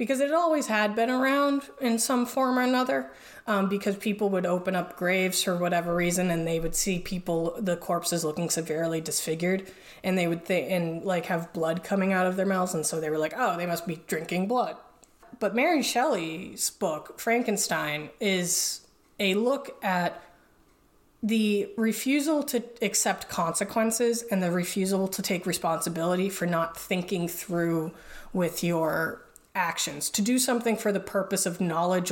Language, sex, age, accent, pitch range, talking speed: English, female, 20-39, American, 175-225 Hz, 170 wpm